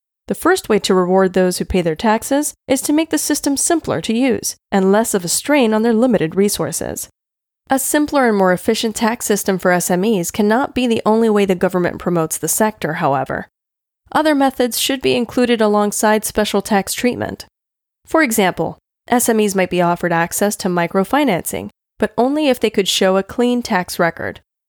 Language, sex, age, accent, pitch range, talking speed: English, female, 10-29, American, 190-245 Hz, 180 wpm